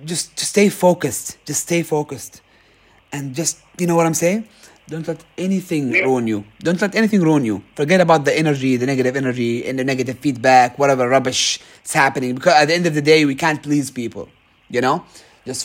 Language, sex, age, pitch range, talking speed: English, male, 30-49, 120-165 Hz, 205 wpm